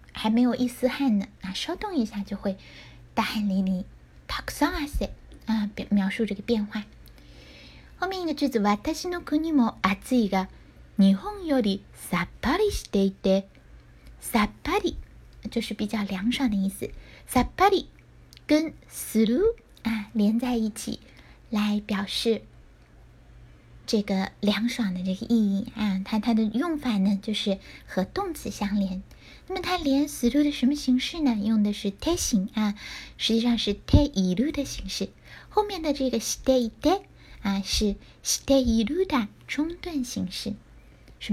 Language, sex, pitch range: Chinese, female, 200-270 Hz